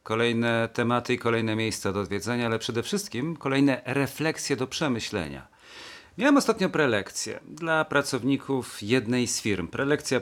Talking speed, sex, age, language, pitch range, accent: 135 wpm, male, 40-59, Polish, 110-140 Hz, native